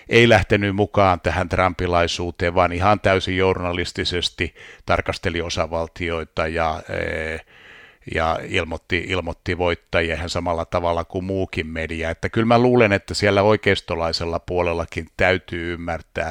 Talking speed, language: 115 wpm, Finnish